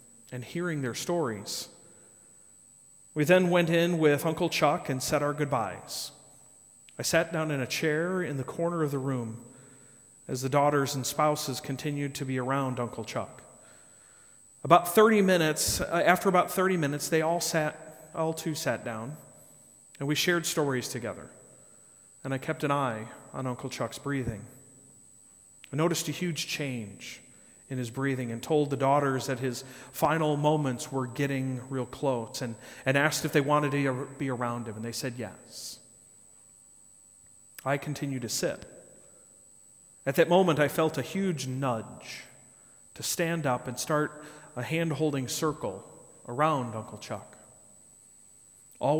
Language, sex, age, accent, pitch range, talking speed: English, male, 40-59, American, 125-155 Hz, 155 wpm